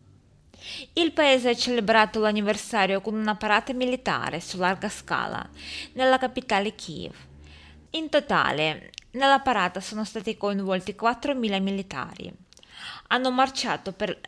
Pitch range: 180-230 Hz